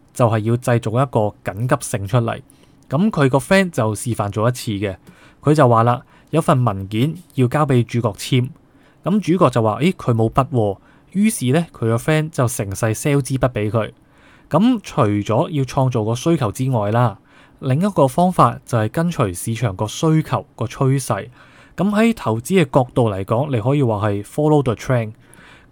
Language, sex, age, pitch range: Chinese, male, 20-39, 120-155 Hz